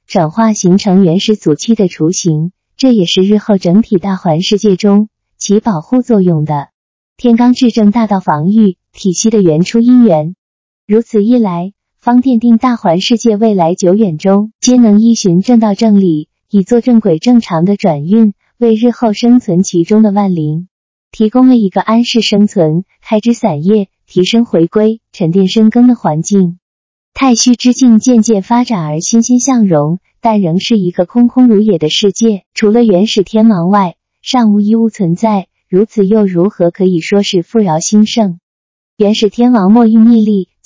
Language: Chinese